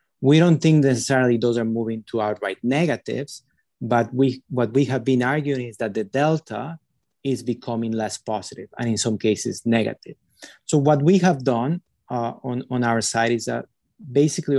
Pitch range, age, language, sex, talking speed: 115-140 Hz, 30-49, English, male, 175 wpm